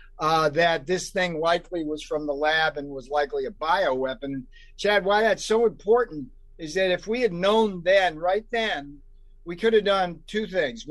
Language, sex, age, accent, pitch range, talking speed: English, male, 50-69, American, 150-190 Hz, 185 wpm